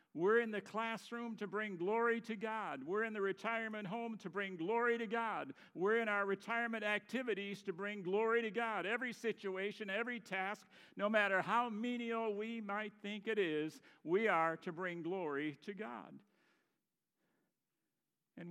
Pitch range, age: 165-220 Hz, 60-79